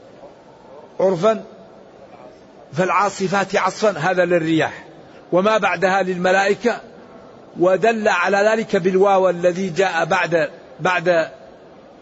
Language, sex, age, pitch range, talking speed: Arabic, male, 60-79, 165-195 Hz, 80 wpm